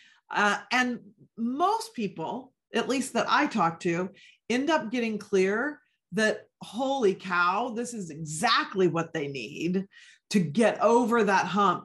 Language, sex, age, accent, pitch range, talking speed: English, female, 40-59, American, 180-235 Hz, 140 wpm